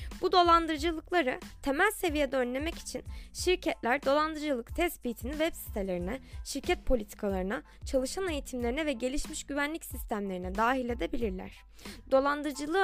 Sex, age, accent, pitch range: female, 20-39, native, 235-305 Hz